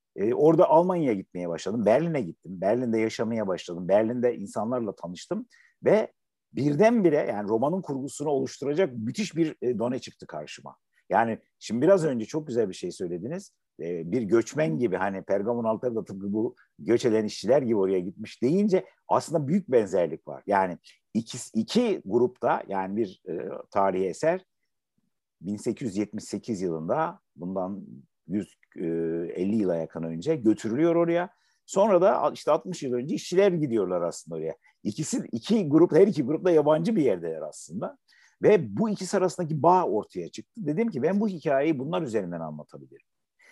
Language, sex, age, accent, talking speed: Turkish, male, 50-69, native, 150 wpm